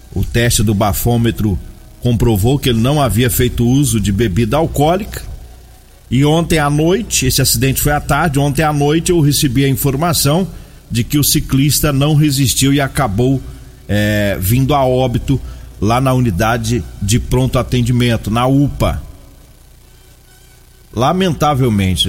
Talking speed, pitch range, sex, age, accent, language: 135 wpm, 110-140 Hz, male, 40-59, Brazilian, Portuguese